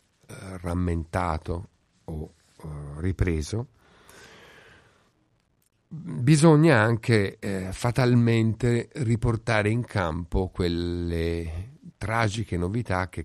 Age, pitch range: 50-69, 90-115 Hz